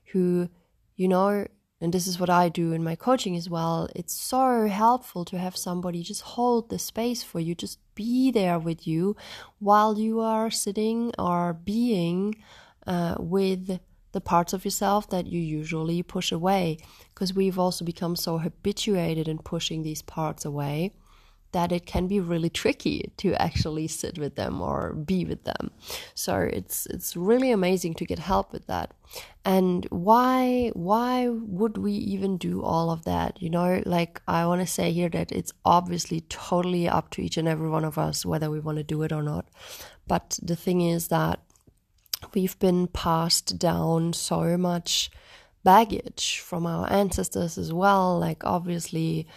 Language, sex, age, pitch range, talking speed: German, female, 30-49, 165-200 Hz, 170 wpm